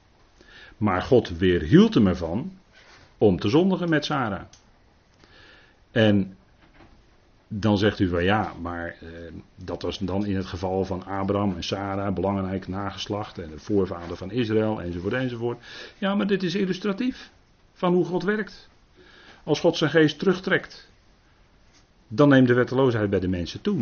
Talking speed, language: 150 wpm, Dutch